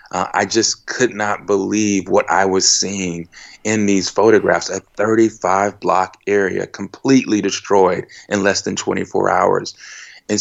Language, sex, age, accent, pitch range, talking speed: English, male, 30-49, American, 90-105 Hz, 145 wpm